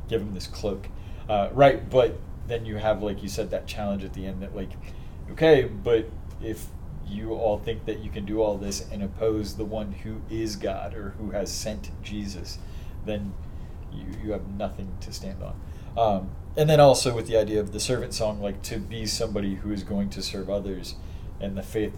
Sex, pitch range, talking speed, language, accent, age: male, 90-110 Hz, 210 wpm, English, American, 30-49